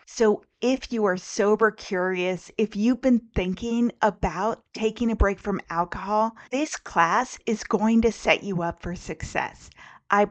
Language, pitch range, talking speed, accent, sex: English, 175-220 Hz, 155 wpm, American, female